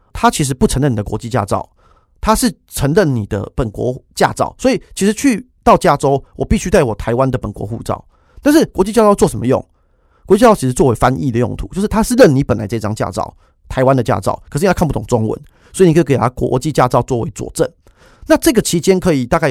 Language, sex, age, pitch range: Chinese, male, 30-49, 110-170 Hz